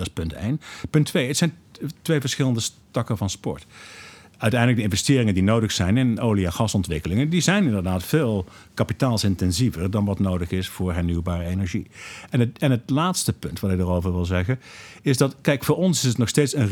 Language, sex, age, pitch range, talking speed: Dutch, male, 50-69, 95-130 Hz, 205 wpm